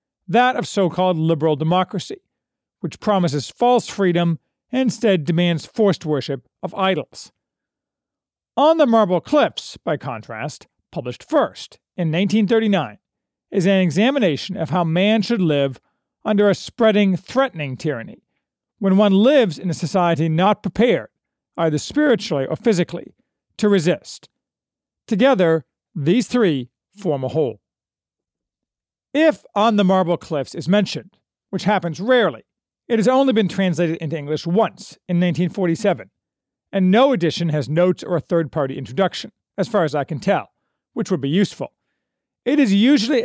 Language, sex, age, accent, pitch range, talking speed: English, male, 40-59, American, 160-220 Hz, 135 wpm